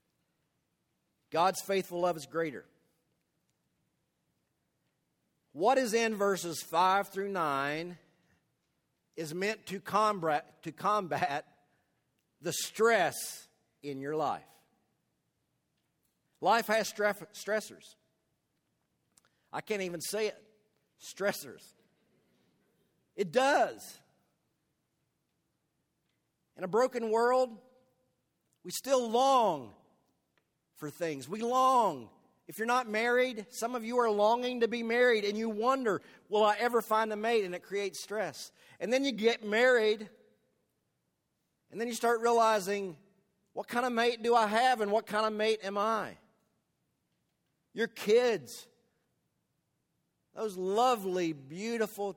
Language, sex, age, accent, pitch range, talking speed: English, male, 50-69, American, 195-235 Hz, 115 wpm